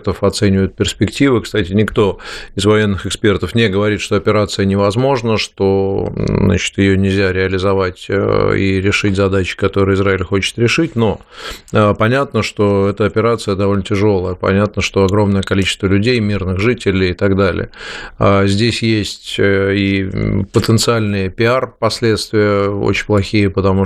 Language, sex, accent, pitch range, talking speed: Russian, male, native, 95-110 Hz, 120 wpm